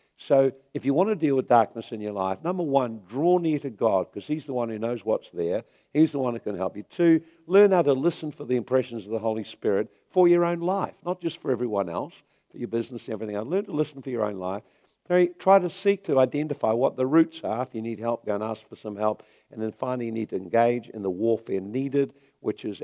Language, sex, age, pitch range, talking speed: English, male, 50-69, 105-140 Hz, 255 wpm